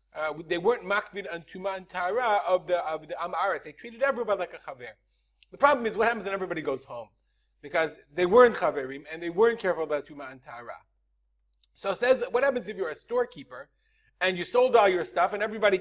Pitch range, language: 165-235 Hz, English